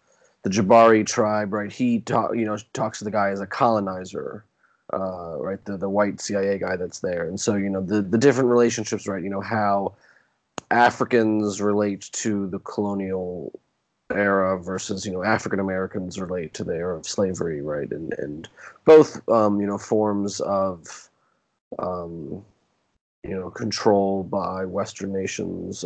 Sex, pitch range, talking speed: male, 95-110 Hz, 160 wpm